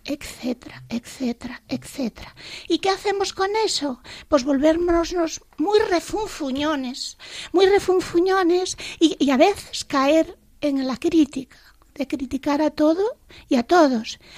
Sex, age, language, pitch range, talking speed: female, 40-59, Spanish, 280-340 Hz, 120 wpm